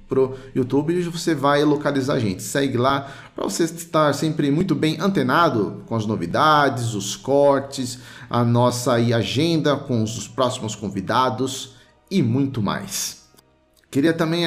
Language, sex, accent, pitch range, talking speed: Portuguese, male, Brazilian, 115-165 Hz, 140 wpm